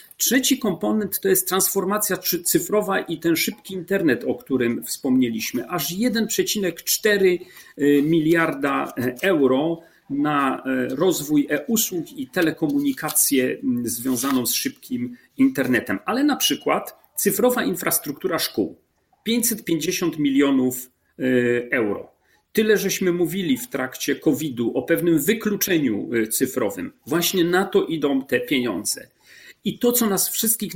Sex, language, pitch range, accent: male, Polish, 150-205 Hz, native